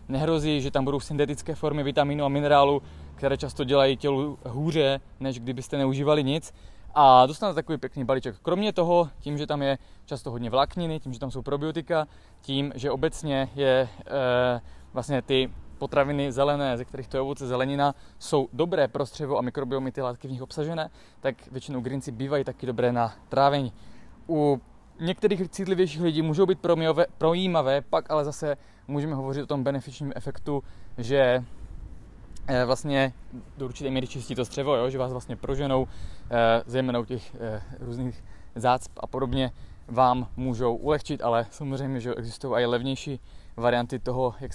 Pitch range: 125-145 Hz